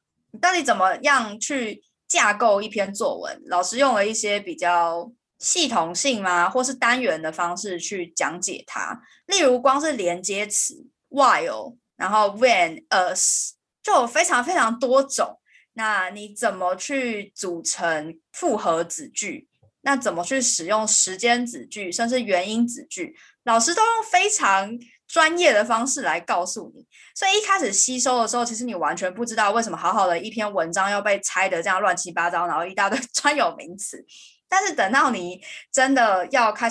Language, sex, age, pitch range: Chinese, female, 20-39, 190-275 Hz